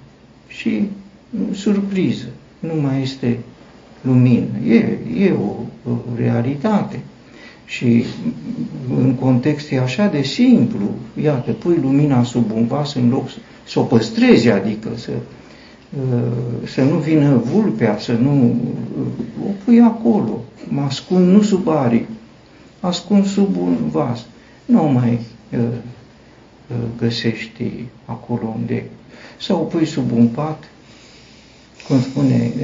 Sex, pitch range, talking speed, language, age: male, 120-150 Hz, 120 wpm, Romanian, 60-79